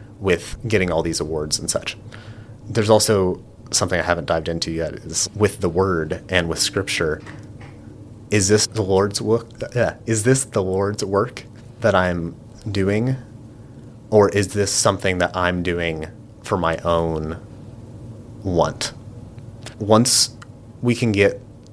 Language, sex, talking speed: English, male, 145 wpm